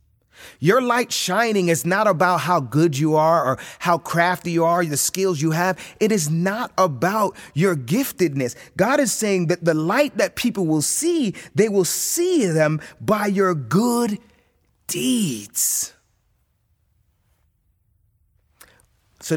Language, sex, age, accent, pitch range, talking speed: English, male, 30-49, American, 145-210 Hz, 135 wpm